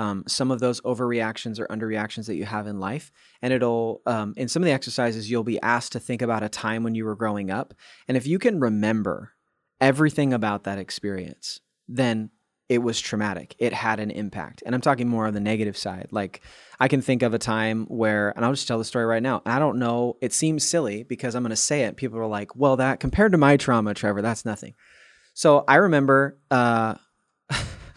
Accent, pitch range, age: American, 110-135 Hz, 20-39